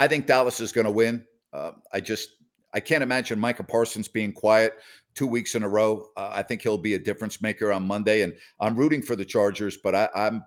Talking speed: 230 wpm